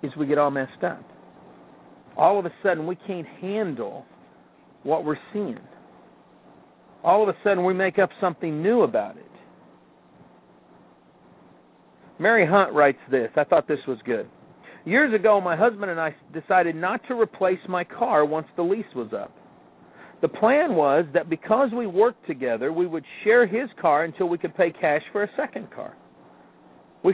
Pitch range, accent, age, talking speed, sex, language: 140-215 Hz, American, 50-69, 170 wpm, male, English